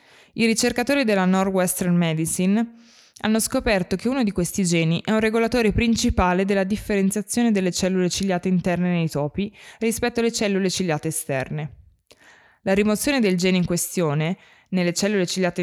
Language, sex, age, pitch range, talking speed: Italian, female, 20-39, 170-220 Hz, 145 wpm